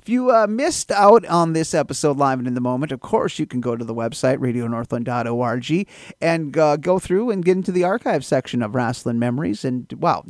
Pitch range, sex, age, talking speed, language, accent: 135-185 Hz, male, 40-59, 215 wpm, English, American